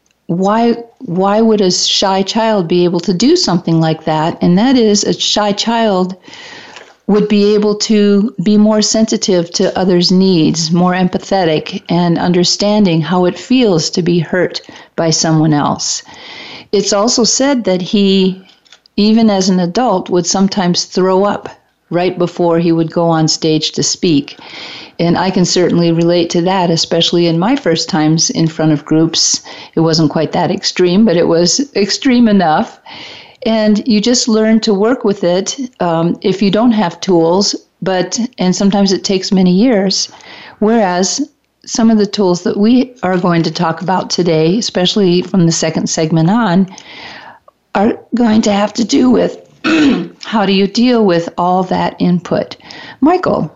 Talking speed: 165 wpm